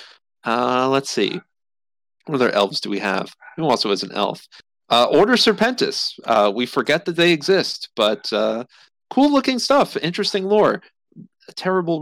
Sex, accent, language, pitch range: male, American, English, 110-180 Hz